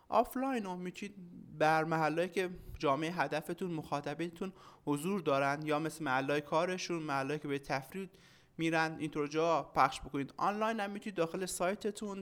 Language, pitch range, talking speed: Persian, 150-180 Hz, 140 wpm